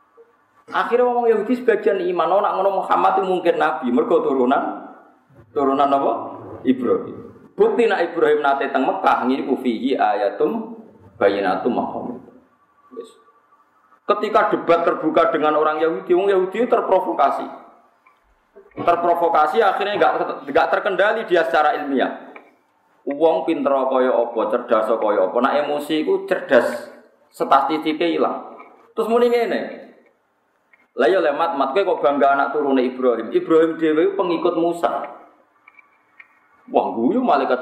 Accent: native